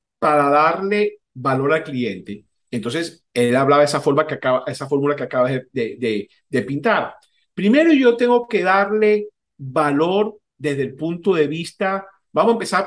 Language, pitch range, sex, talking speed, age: Spanish, 145-210 Hz, male, 150 wpm, 50-69